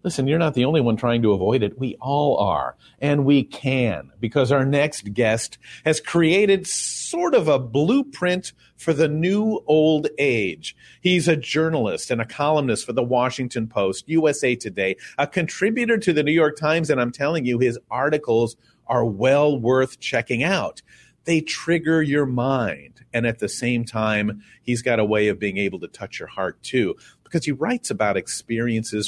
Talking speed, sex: 180 wpm, male